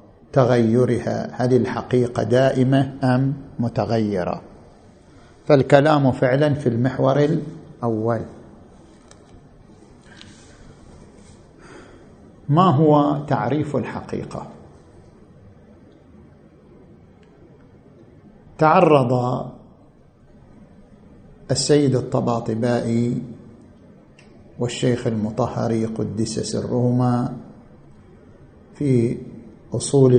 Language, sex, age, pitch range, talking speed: Arabic, male, 50-69, 115-140 Hz, 50 wpm